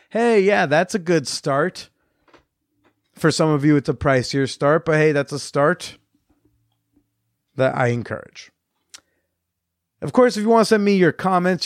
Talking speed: 165 wpm